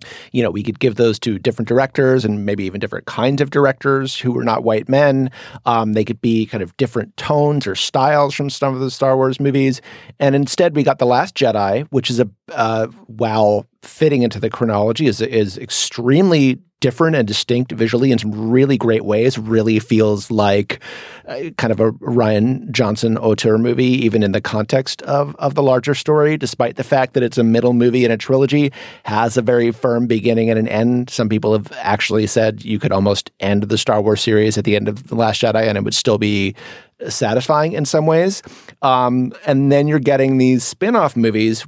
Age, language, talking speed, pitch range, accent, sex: 30-49, English, 205 wpm, 110-130 Hz, American, male